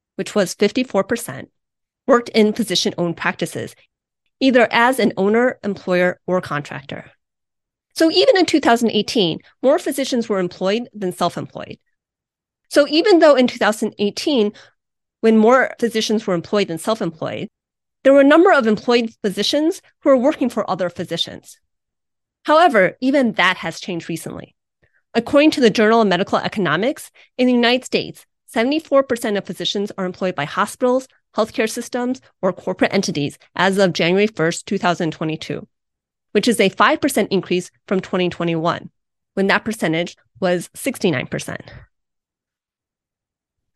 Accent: American